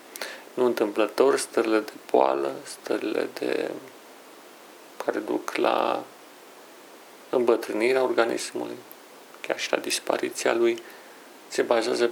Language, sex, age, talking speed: Romanian, male, 40-59, 95 wpm